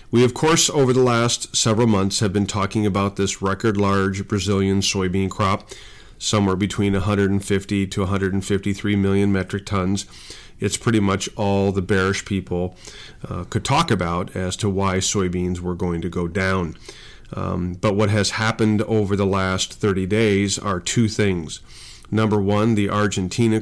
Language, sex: English, male